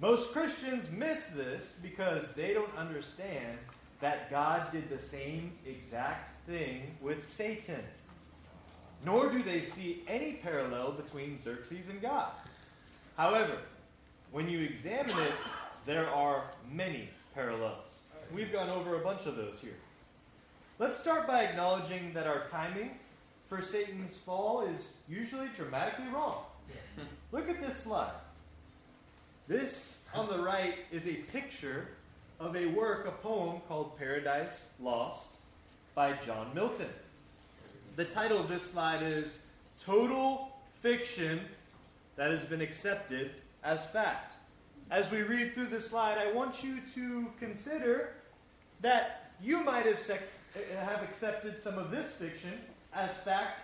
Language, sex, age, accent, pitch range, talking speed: English, male, 30-49, American, 150-220 Hz, 130 wpm